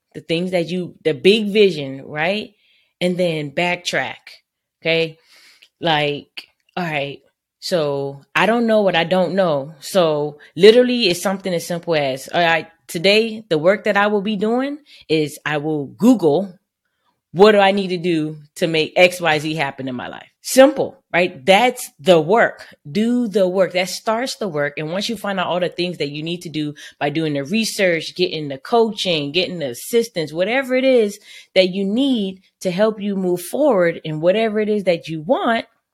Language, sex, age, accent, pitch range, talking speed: English, female, 20-39, American, 160-210 Hz, 185 wpm